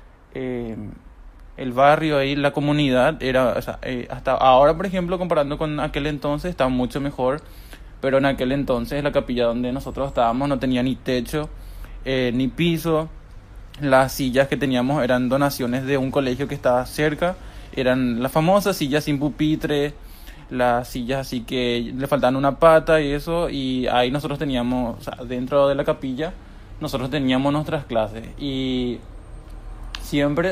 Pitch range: 125-145 Hz